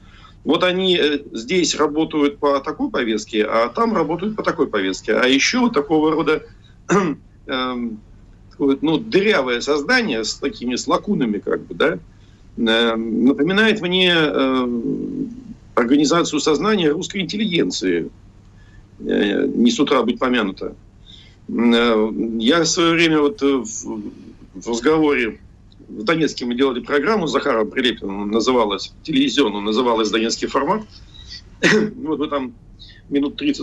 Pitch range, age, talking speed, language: 110-170 Hz, 50-69, 120 wpm, Russian